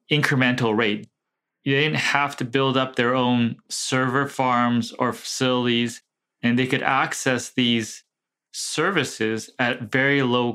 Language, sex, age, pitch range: English, male, 20-39, 120-150 Hz